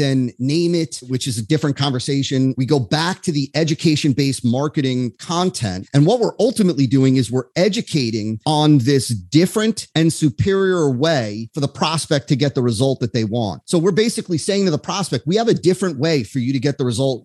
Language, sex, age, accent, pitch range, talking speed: English, male, 30-49, American, 130-170 Hz, 200 wpm